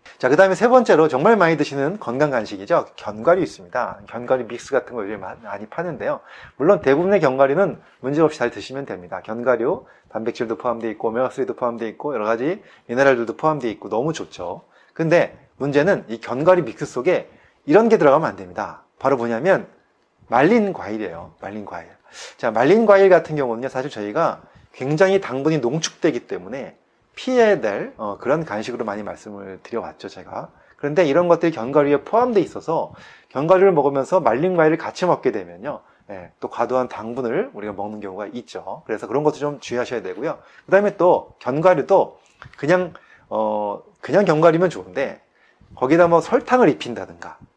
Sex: male